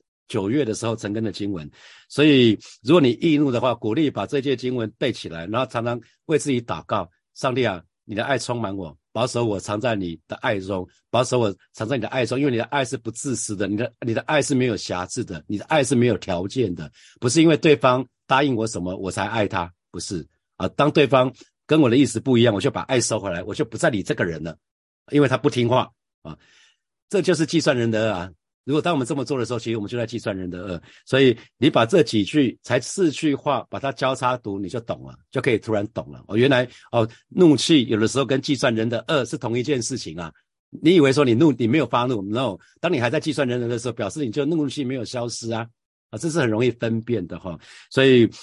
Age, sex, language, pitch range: 50-69, male, Chinese, 105-135 Hz